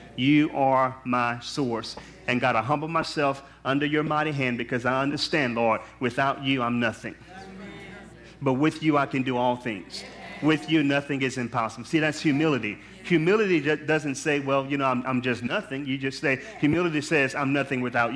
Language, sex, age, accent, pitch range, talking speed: English, male, 40-59, American, 135-180 Hz, 180 wpm